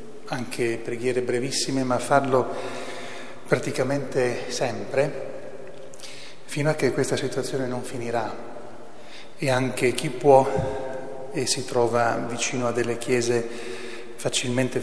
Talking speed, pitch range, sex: 105 wpm, 120-130 Hz, male